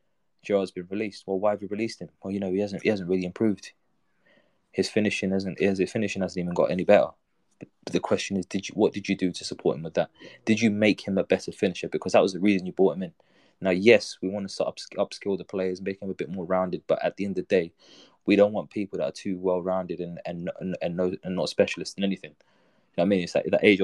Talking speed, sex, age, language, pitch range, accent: 275 wpm, male, 20-39, English, 90-100 Hz, British